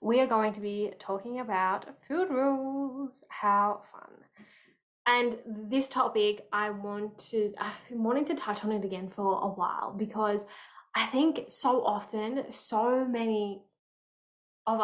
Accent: Australian